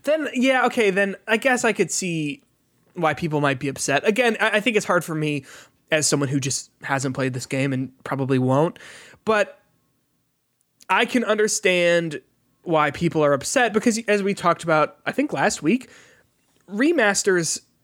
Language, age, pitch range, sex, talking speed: English, 20-39, 140-180 Hz, male, 170 wpm